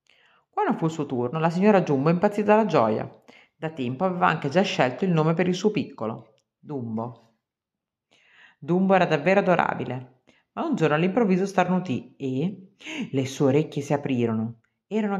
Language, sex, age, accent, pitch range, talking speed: Italian, female, 40-59, native, 130-185 Hz, 160 wpm